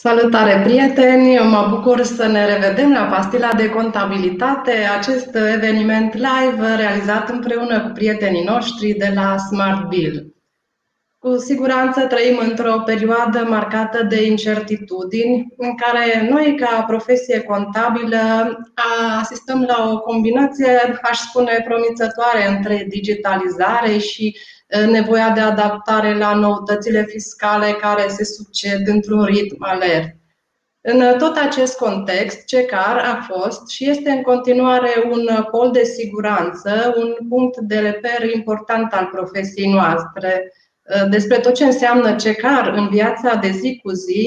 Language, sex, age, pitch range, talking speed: Romanian, female, 30-49, 205-240 Hz, 125 wpm